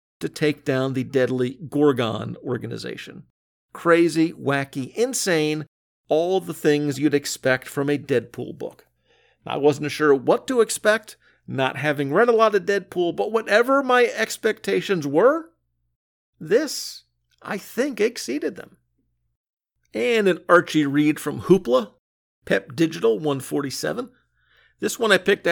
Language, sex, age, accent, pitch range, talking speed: English, male, 50-69, American, 130-170 Hz, 130 wpm